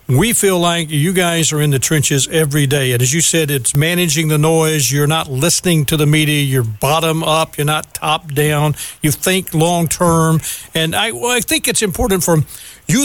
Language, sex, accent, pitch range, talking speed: English, male, American, 155-215 Hz, 205 wpm